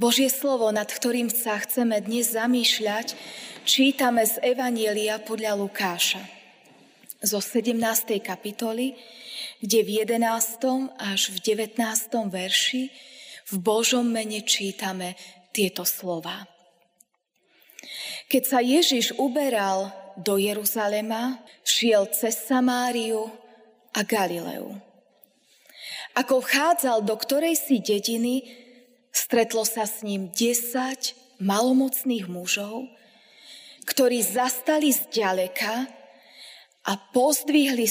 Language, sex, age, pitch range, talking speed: Slovak, female, 20-39, 205-255 Hz, 95 wpm